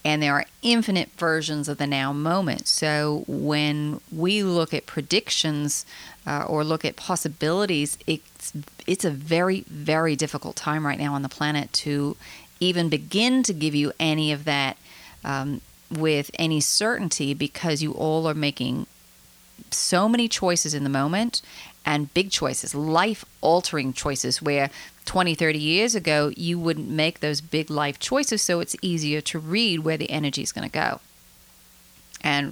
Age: 40-59